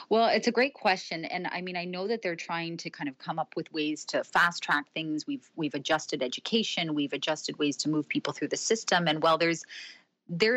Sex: female